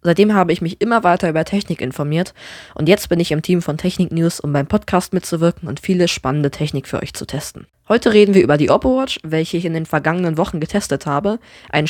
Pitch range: 150-185 Hz